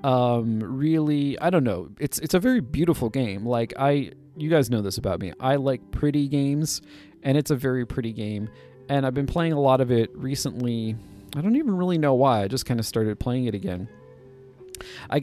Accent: American